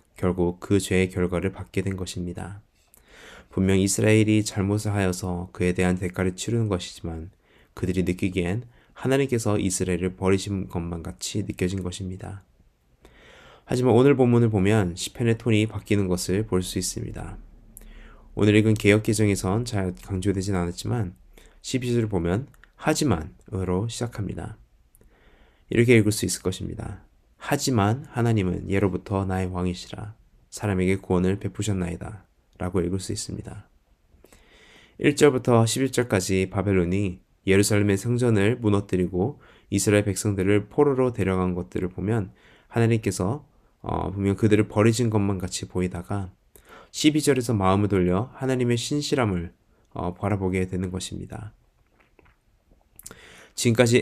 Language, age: Korean, 20-39